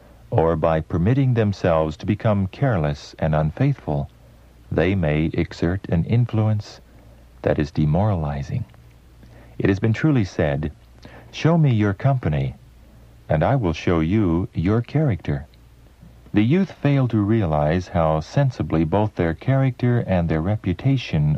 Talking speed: 130 wpm